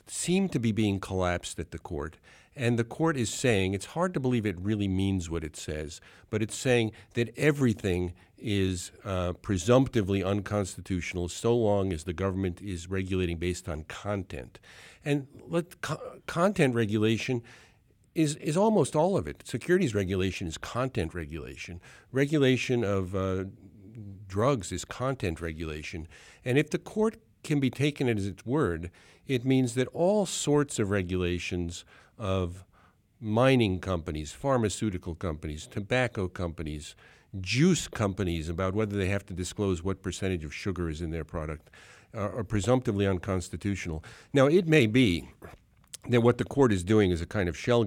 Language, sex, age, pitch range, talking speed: English, male, 50-69, 90-120 Hz, 155 wpm